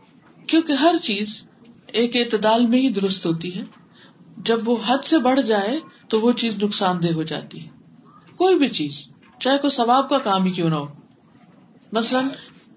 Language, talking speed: Urdu, 175 wpm